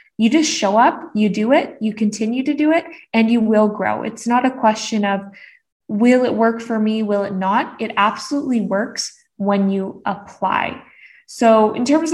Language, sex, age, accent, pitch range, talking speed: English, female, 20-39, American, 210-260 Hz, 190 wpm